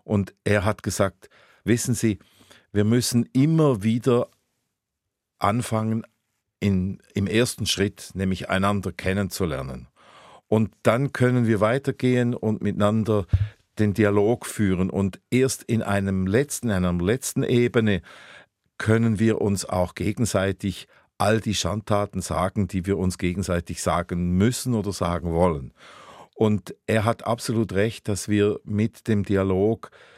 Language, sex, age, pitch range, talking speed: German, male, 50-69, 95-115 Hz, 125 wpm